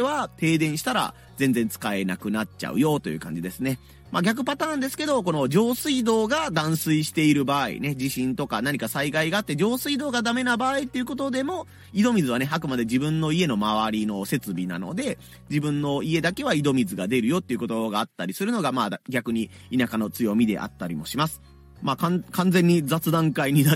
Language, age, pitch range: Japanese, 30-49, 120-185 Hz